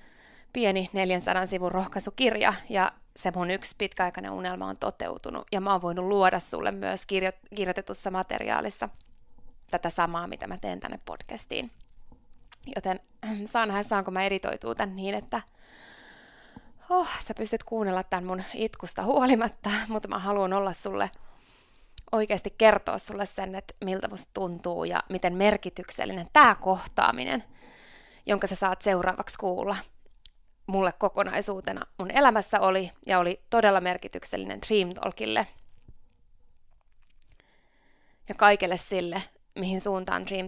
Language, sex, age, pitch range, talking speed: Finnish, female, 20-39, 185-225 Hz, 125 wpm